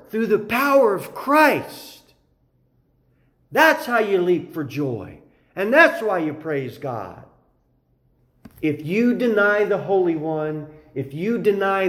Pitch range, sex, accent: 145-225 Hz, male, American